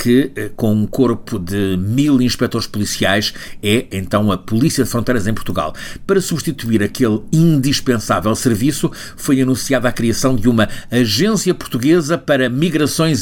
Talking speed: 140 wpm